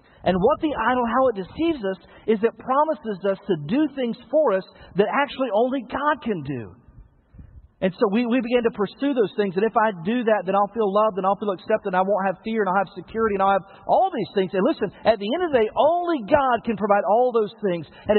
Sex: male